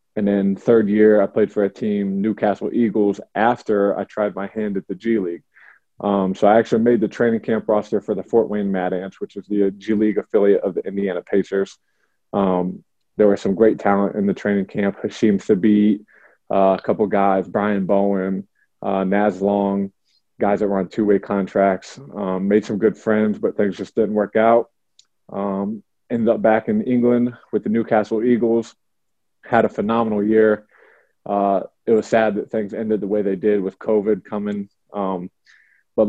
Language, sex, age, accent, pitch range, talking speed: English, male, 20-39, American, 100-110 Hz, 190 wpm